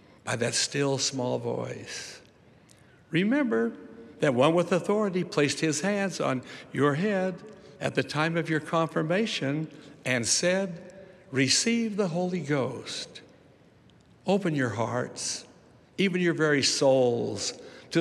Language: English